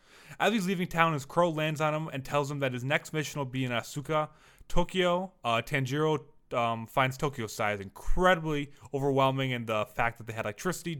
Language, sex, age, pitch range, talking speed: English, male, 20-39, 120-160 Hz, 195 wpm